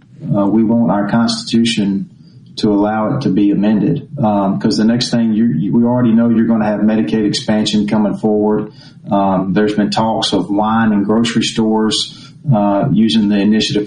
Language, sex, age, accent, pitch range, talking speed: English, male, 40-59, American, 105-120 Hz, 180 wpm